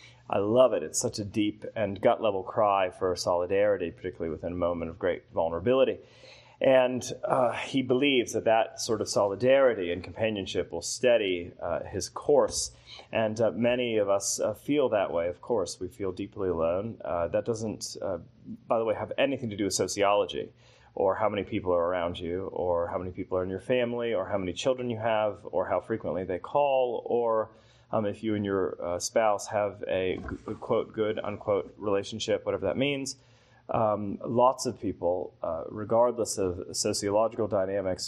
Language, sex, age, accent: English, male, 30-49, American